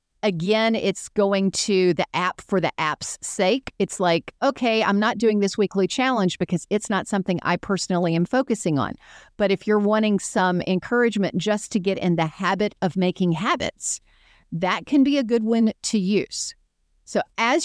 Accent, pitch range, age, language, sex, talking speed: American, 175-220 Hz, 40-59, English, female, 180 wpm